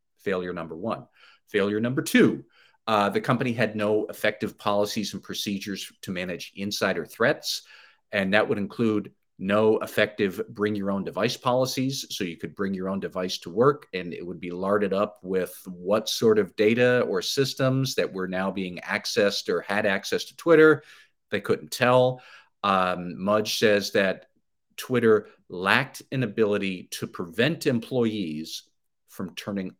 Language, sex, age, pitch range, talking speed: English, male, 50-69, 100-120 Hz, 155 wpm